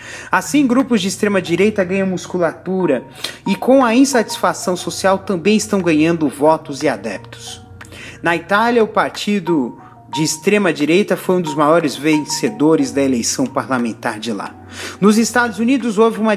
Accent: Brazilian